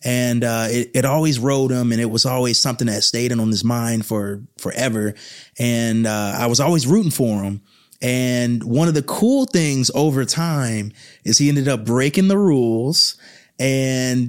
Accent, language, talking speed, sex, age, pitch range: American, English, 185 wpm, male, 30-49, 115-145 Hz